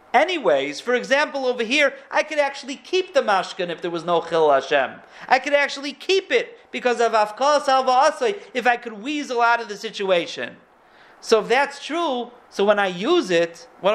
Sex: male